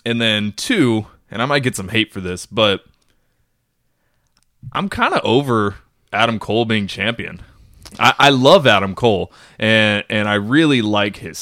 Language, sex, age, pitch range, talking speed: English, male, 20-39, 100-130 Hz, 165 wpm